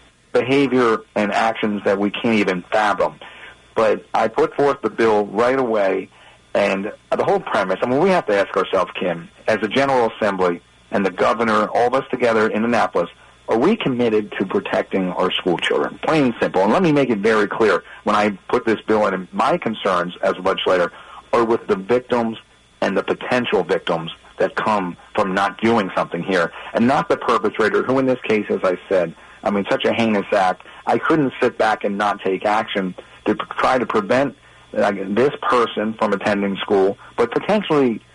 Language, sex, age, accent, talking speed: English, male, 40-59, American, 195 wpm